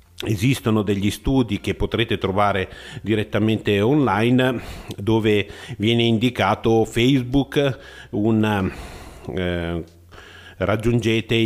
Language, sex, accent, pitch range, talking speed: Italian, male, native, 100-120 Hz, 80 wpm